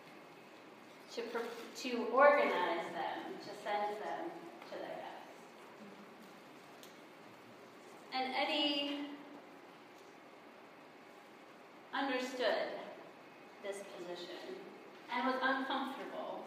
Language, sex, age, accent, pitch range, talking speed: English, female, 30-49, American, 230-290 Hz, 60 wpm